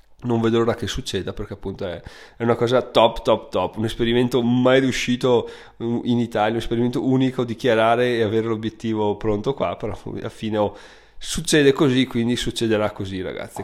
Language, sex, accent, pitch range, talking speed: Italian, male, native, 110-130 Hz, 165 wpm